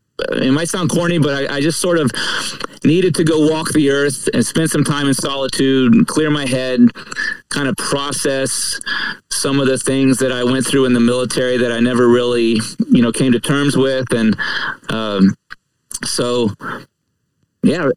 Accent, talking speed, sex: American, 180 wpm, male